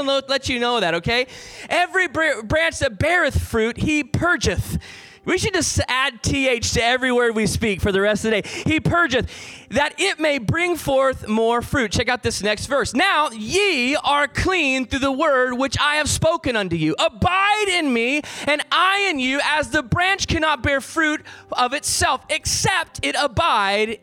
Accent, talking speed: American, 180 wpm